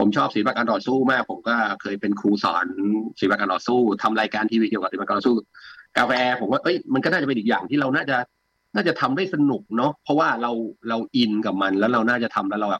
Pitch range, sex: 105-150 Hz, male